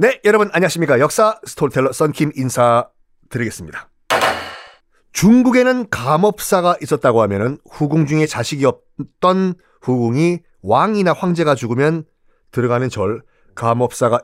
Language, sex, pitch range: Korean, male, 130-205 Hz